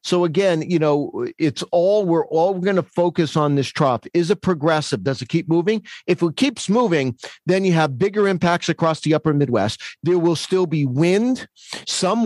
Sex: male